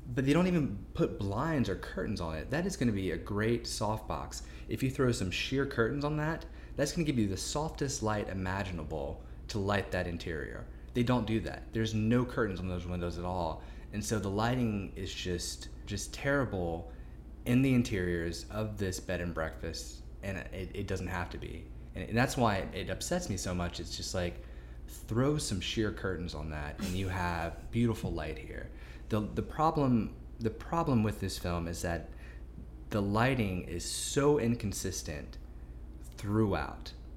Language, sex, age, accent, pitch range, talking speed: English, male, 20-39, American, 80-115 Hz, 185 wpm